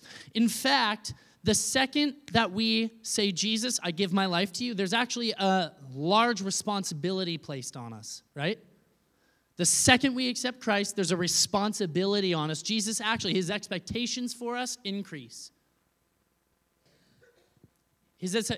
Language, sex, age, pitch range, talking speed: English, male, 20-39, 170-225 Hz, 130 wpm